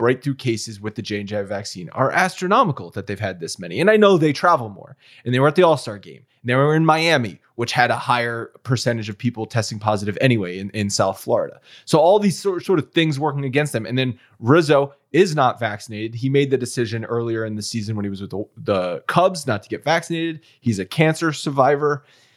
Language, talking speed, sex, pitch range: English, 230 wpm, male, 110-145 Hz